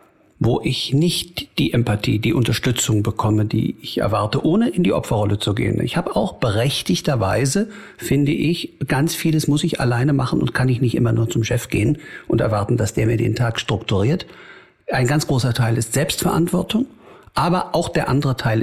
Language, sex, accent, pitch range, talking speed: German, male, German, 115-155 Hz, 185 wpm